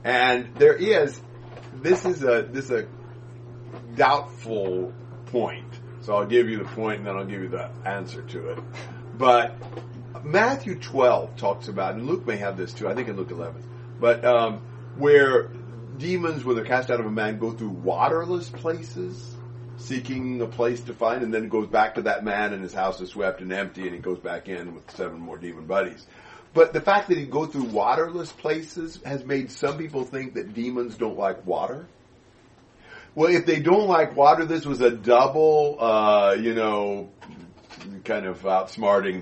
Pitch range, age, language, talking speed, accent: 110-130 Hz, 40-59, English, 185 wpm, American